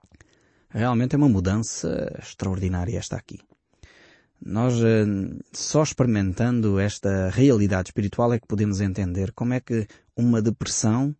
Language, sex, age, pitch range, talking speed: Portuguese, male, 20-39, 100-130 Hz, 120 wpm